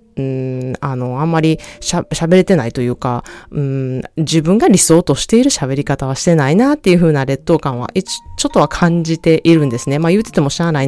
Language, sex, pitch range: Japanese, female, 145-220 Hz